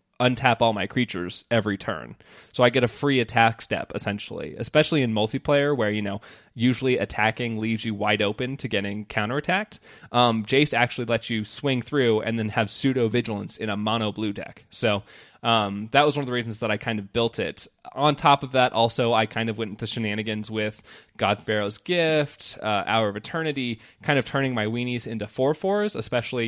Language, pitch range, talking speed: English, 105-130 Hz, 200 wpm